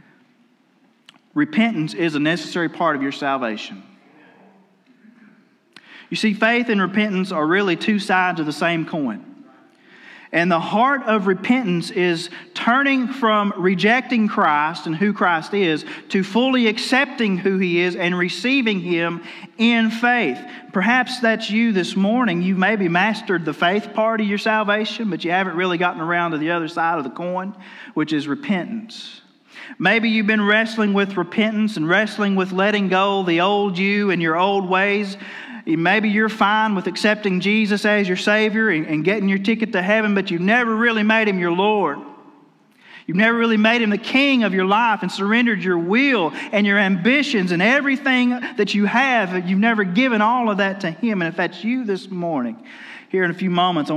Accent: American